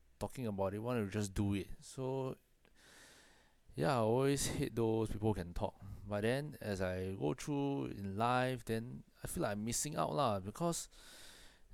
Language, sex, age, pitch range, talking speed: English, male, 20-39, 95-110 Hz, 175 wpm